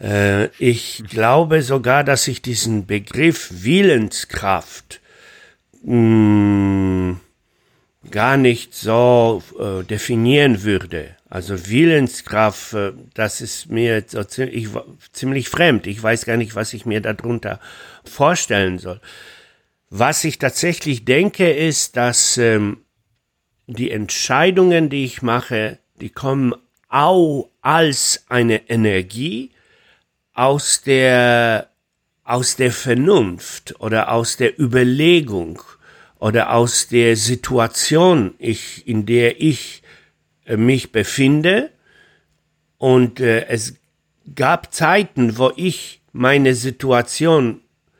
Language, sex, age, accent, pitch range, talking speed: German, male, 60-79, German, 110-140 Hz, 95 wpm